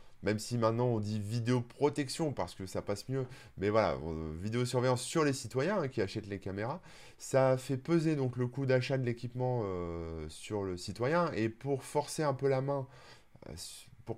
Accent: French